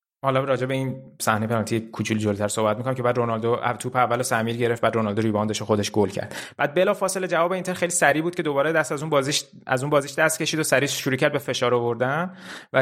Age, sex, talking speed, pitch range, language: 30-49, male, 240 wpm, 115-150 Hz, Persian